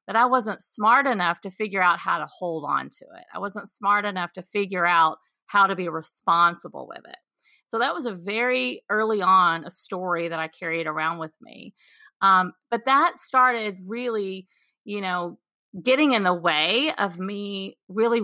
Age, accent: 40-59, American